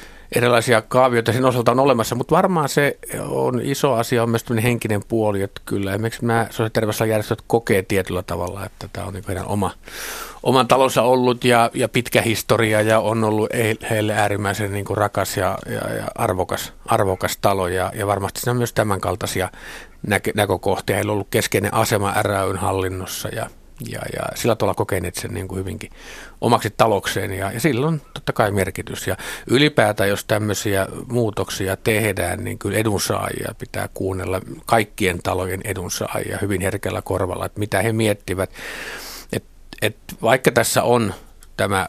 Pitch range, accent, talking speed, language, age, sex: 95-115 Hz, native, 165 wpm, Finnish, 50-69, male